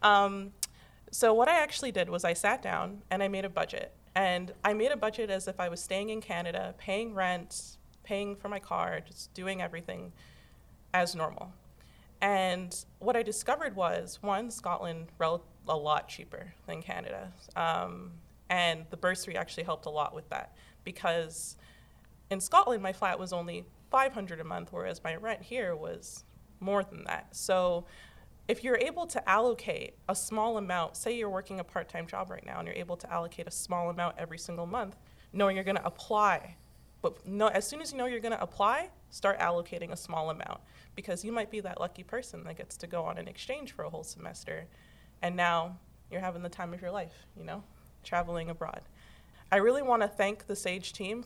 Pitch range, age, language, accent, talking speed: 175-210 Hz, 30-49, English, American, 195 wpm